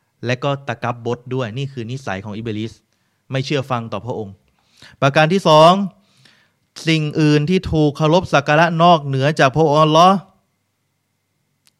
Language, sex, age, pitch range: Thai, male, 20-39, 115-150 Hz